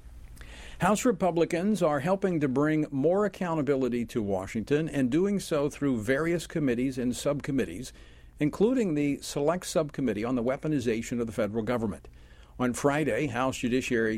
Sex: male